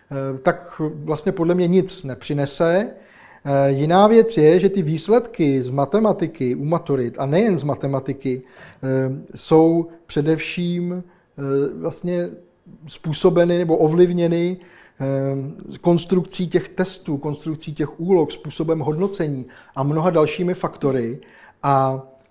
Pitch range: 140-175 Hz